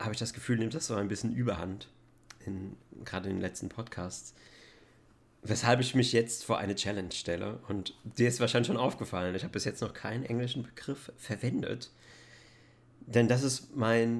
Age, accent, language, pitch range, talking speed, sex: 40-59, German, German, 110-130 Hz, 180 wpm, male